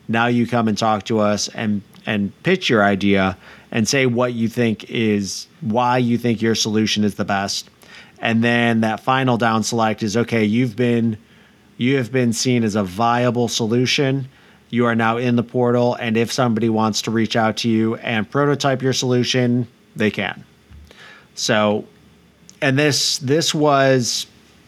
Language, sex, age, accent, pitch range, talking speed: English, male, 30-49, American, 110-125 Hz, 170 wpm